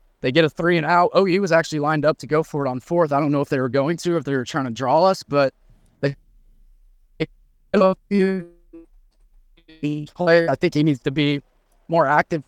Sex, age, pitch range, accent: male, 20-39, 140-175 Hz, American